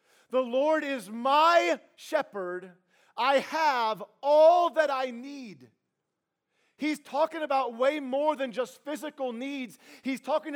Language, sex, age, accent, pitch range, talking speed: English, male, 40-59, American, 180-285 Hz, 125 wpm